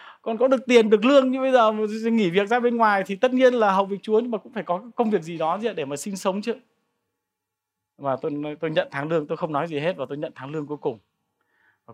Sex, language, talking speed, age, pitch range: male, Vietnamese, 275 wpm, 20-39, 145-205 Hz